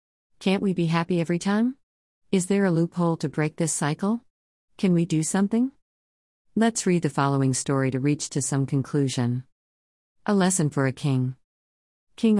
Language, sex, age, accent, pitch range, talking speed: English, female, 50-69, American, 130-165 Hz, 165 wpm